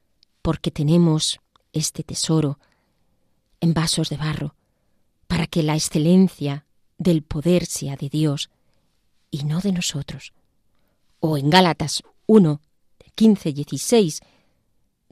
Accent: Spanish